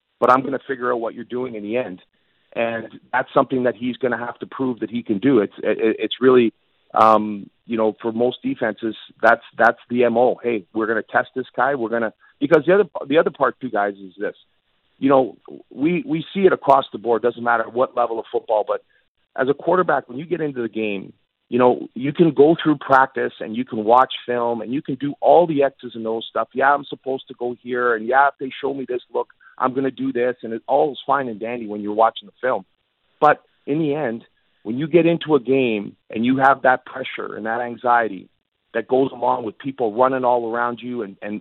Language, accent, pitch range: English, American, 115-140 Hz